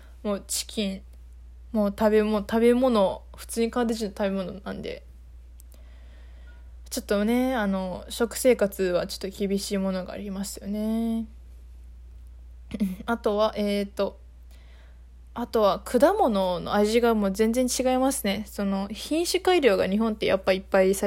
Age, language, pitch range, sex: 20-39, Japanese, 180-235 Hz, female